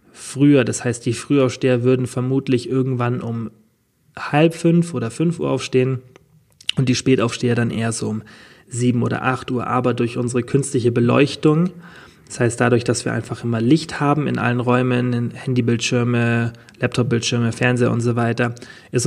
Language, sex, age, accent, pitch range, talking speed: German, male, 20-39, German, 120-135 Hz, 155 wpm